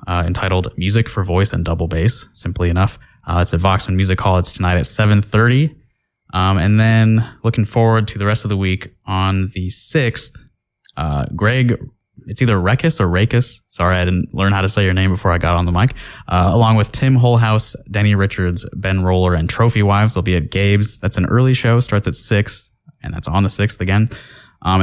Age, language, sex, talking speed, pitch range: 20-39, English, male, 210 wpm, 95-110 Hz